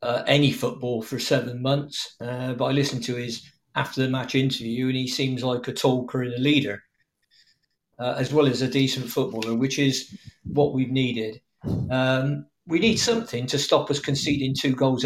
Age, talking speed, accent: 40-59, 185 wpm, British